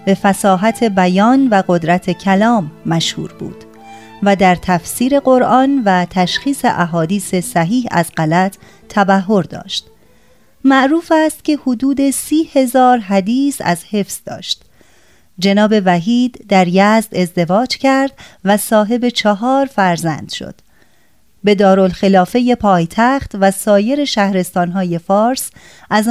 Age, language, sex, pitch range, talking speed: 30-49, Persian, female, 180-250 Hz, 115 wpm